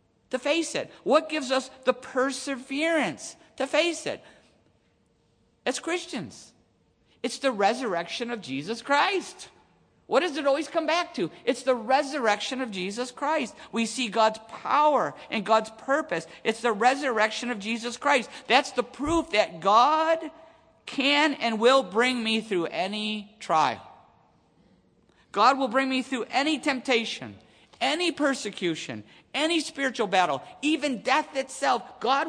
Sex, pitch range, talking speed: male, 205-280 Hz, 140 wpm